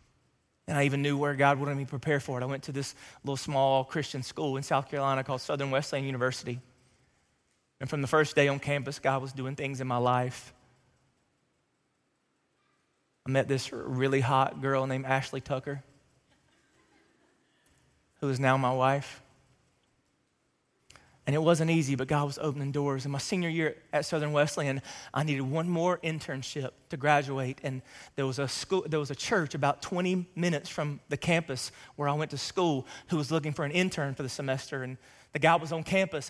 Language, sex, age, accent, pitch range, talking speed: English, male, 30-49, American, 135-160 Hz, 180 wpm